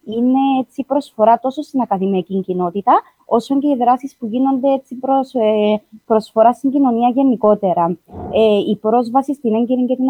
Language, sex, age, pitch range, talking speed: Greek, female, 20-39, 210-260 Hz, 130 wpm